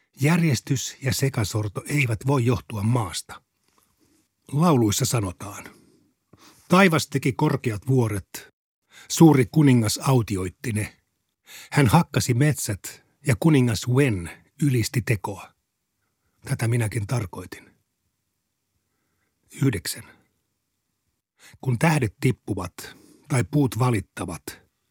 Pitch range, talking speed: 110-135 Hz, 85 wpm